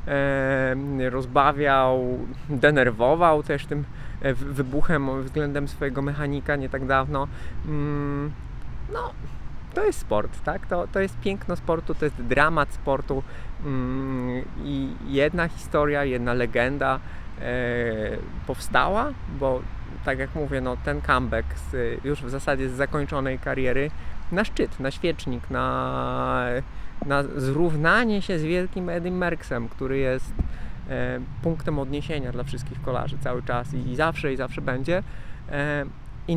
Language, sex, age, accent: Polish, male, 20-39, native